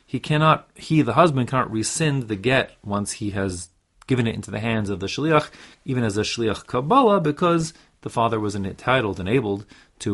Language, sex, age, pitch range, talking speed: English, male, 30-49, 100-140 Hz, 190 wpm